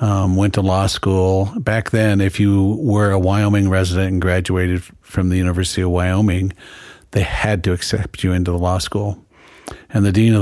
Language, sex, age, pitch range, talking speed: English, male, 50-69, 90-100 Hz, 185 wpm